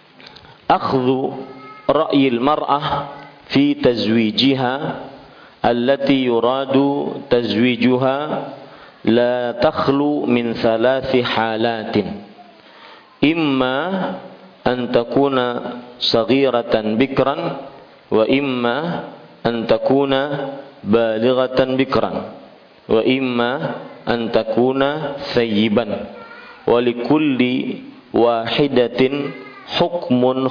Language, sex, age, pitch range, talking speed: Malay, male, 50-69, 120-140 Hz, 60 wpm